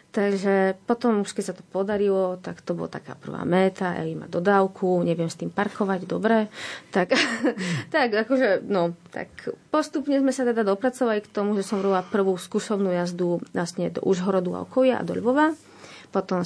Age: 30-49